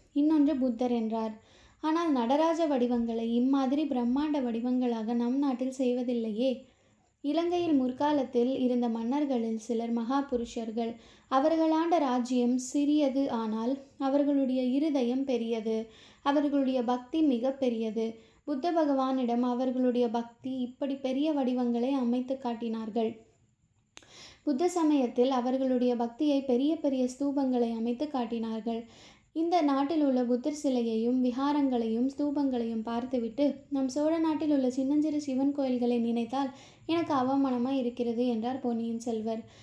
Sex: female